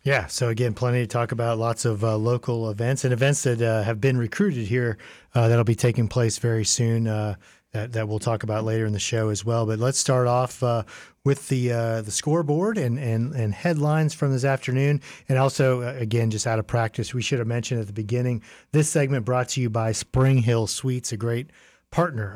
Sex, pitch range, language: male, 115-130 Hz, English